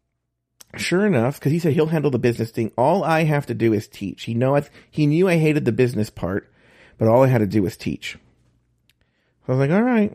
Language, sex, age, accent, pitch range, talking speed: English, male, 40-59, American, 110-150 Hz, 240 wpm